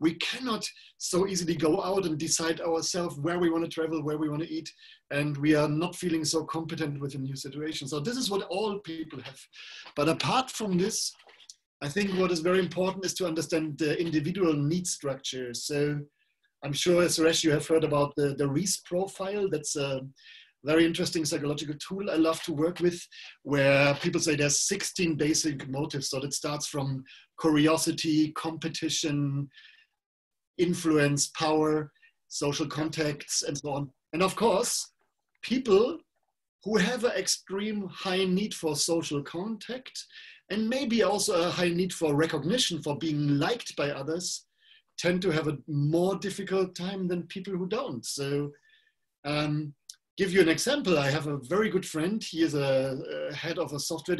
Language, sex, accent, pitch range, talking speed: Hindi, male, German, 150-190 Hz, 175 wpm